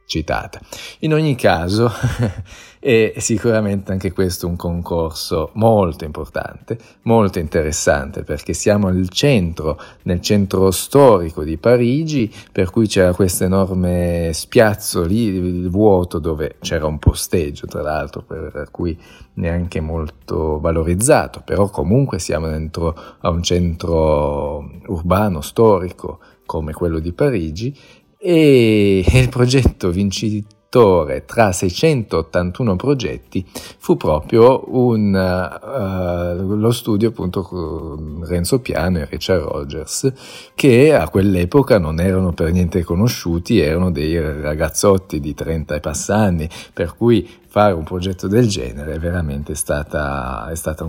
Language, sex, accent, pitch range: Italian, male, native, 80-110 Hz